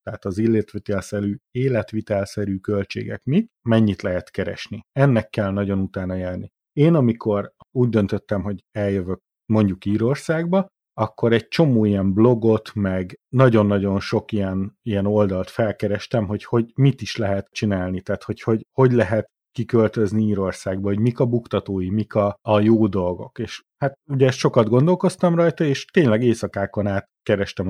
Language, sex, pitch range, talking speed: Hungarian, male, 100-120 Hz, 145 wpm